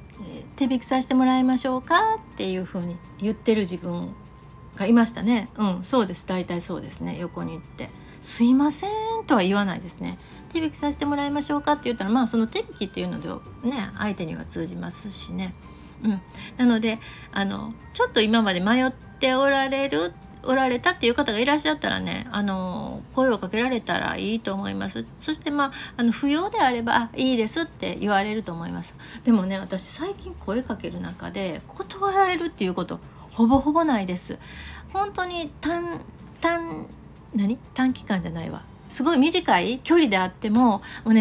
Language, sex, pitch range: Japanese, female, 195-285 Hz